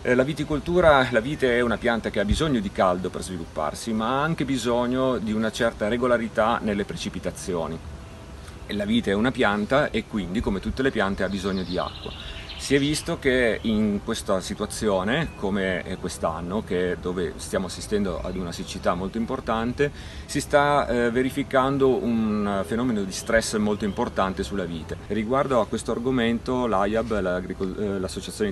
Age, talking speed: 40-59, 155 wpm